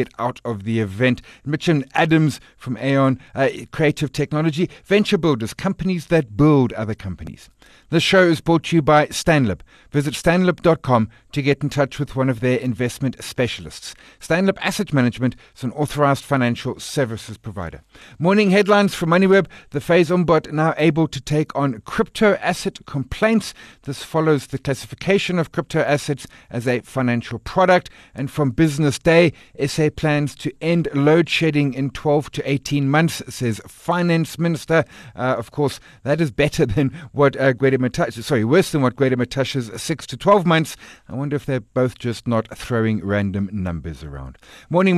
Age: 50-69